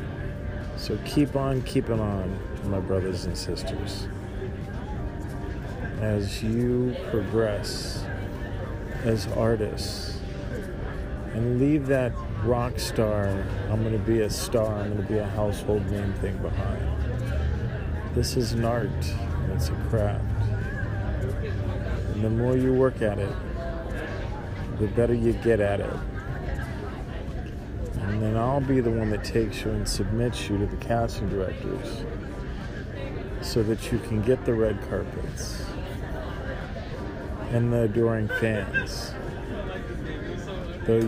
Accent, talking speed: American, 120 wpm